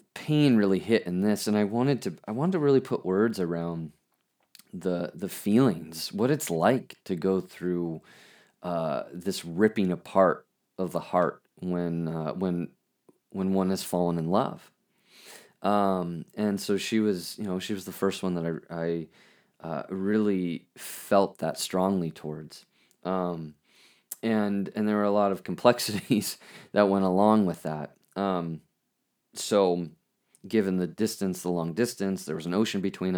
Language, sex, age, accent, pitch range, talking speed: English, male, 30-49, American, 85-105 Hz, 160 wpm